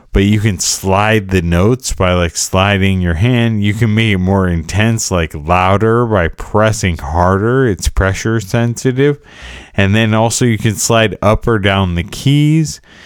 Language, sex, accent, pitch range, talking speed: English, male, American, 85-110 Hz, 165 wpm